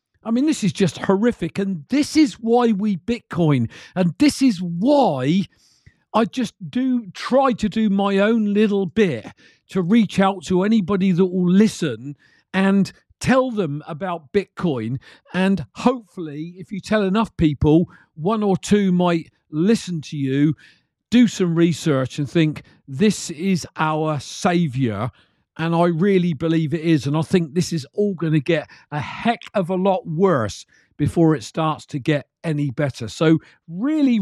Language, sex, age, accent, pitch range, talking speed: English, male, 50-69, British, 155-205 Hz, 160 wpm